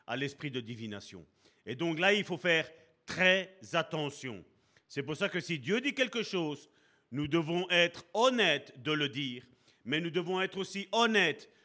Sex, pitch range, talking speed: male, 145-195 Hz, 175 wpm